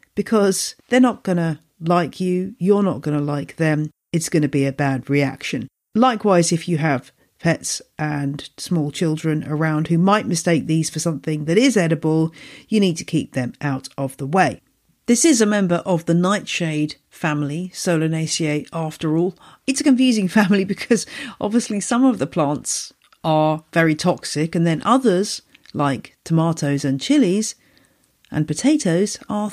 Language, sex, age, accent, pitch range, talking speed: English, female, 50-69, British, 155-230 Hz, 165 wpm